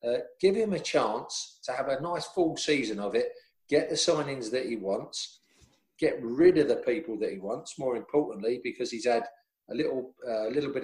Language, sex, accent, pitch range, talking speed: English, male, British, 115-155 Hz, 205 wpm